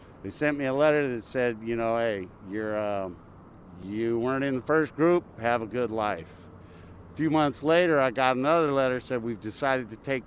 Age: 50-69